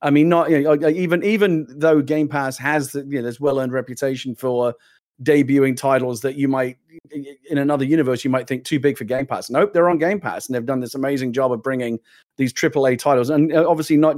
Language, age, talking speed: English, 30-49, 225 wpm